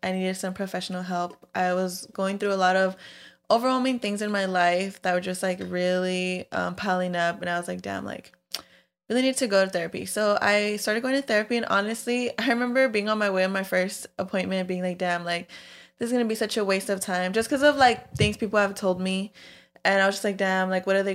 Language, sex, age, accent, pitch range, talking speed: English, female, 20-39, American, 180-205 Hz, 250 wpm